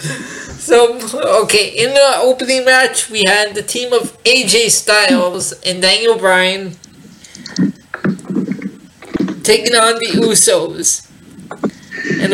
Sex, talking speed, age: male, 100 wpm, 20-39